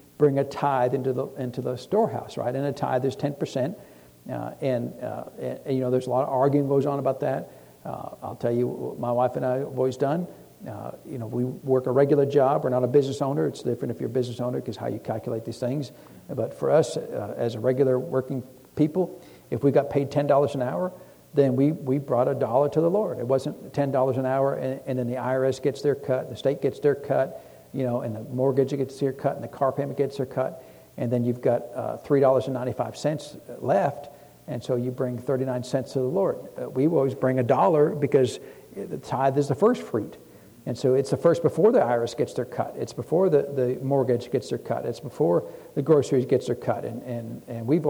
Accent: American